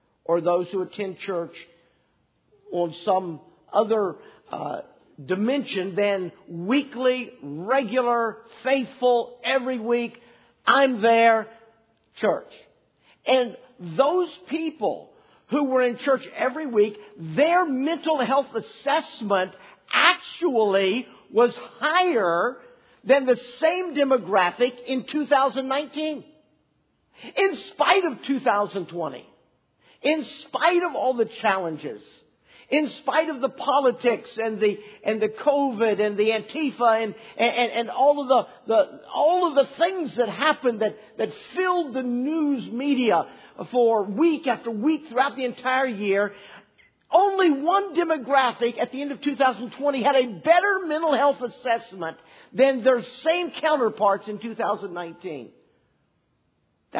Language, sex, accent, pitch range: English, male, American, 215-285 Hz